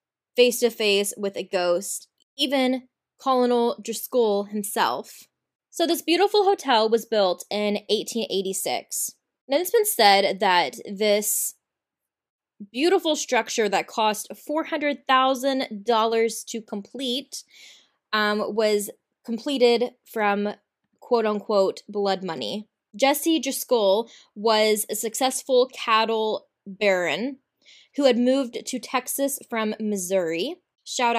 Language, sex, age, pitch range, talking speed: English, female, 20-39, 205-260 Hz, 100 wpm